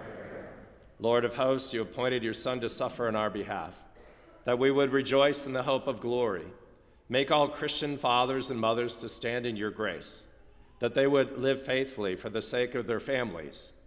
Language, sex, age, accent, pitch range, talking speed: English, male, 50-69, American, 110-125 Hz, 185 wpm